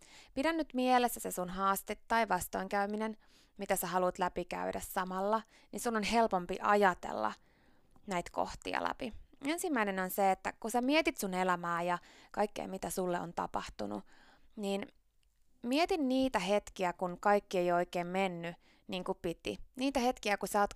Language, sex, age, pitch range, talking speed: Finnish, female, 20-39, 180-255 Hz, 155 wpm